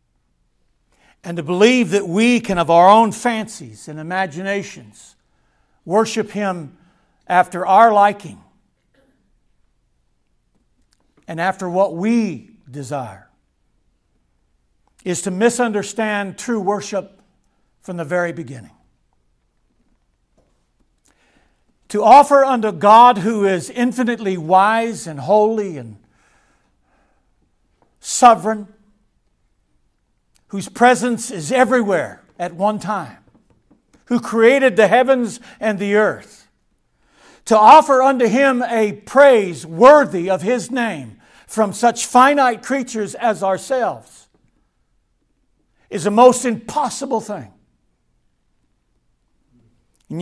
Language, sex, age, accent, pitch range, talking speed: English, male, 60-79, American, 145-230 Hz, 95 wpm